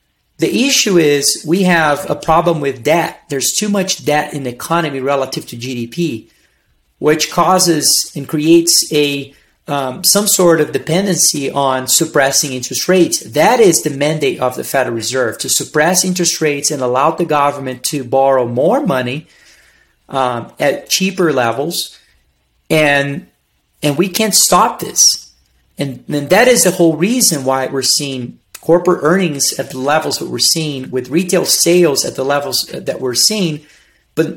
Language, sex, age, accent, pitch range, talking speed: English, male, 30-49, American, 135-175 Hz, 160 wpm